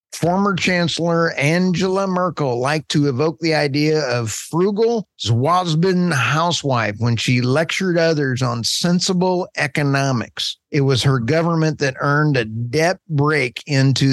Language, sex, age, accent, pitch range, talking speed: English, male, 50-69, American, 130-165 Hz, 125 wpm